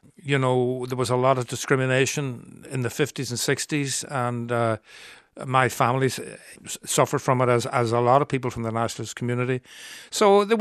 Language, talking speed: English, 185 wpm